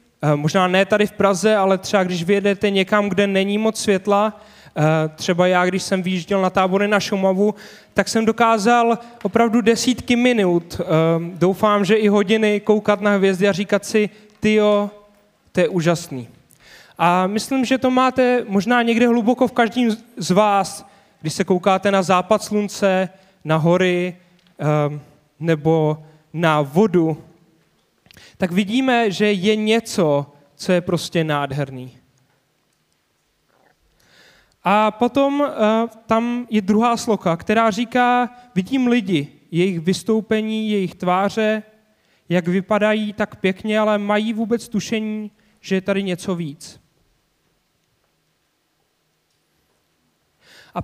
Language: Czech